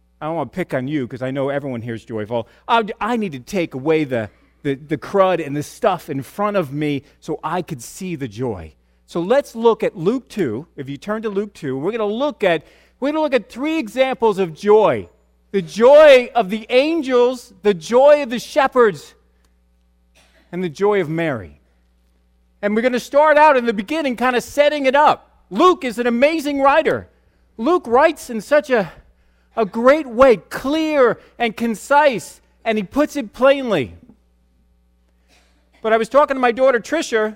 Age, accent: 40-59, American